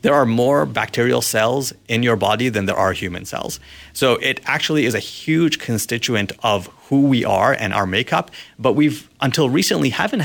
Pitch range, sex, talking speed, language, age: 105-125 Hz, male, 185 wpm, English, 30-49